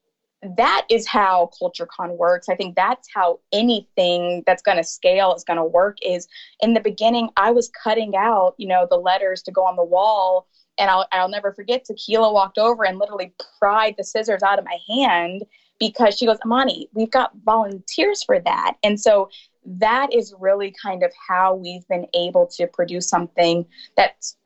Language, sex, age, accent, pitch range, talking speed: English, female, 20-39, American, 185-230 Hz, 185 wpm